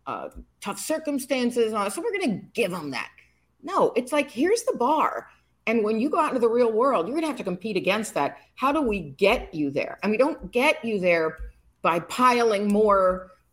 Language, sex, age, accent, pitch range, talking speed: English, female, 50-69, American, 160-215 Hz, 215 wpm